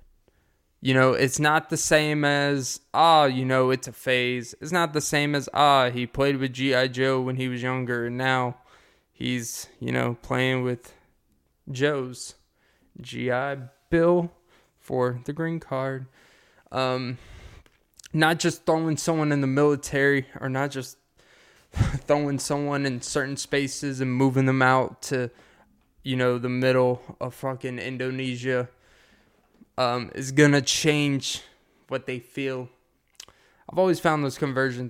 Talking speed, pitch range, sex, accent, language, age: 140 wpm, 125-145 Hz, male, American, English, 20-39